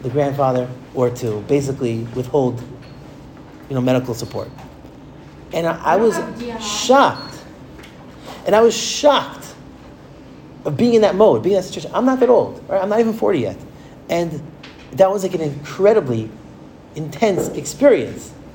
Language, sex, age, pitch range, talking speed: English, male, 30-49, 135-190 Hz, 150 wpm